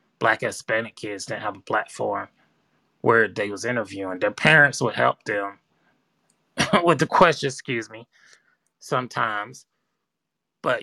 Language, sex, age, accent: English, male, 20-39, American